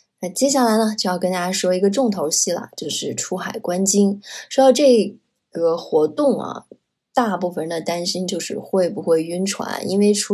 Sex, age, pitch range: female, 20-39, 180-220 Hz